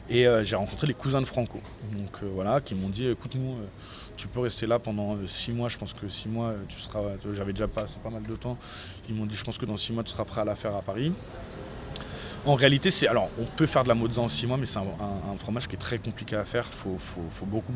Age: 30-49